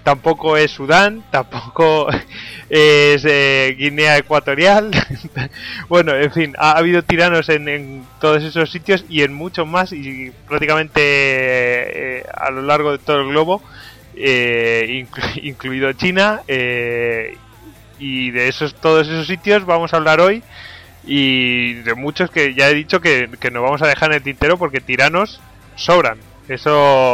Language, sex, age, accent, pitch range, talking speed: Spanish, male, 20-39, Spanish, 130-165 Hz, 155 wpm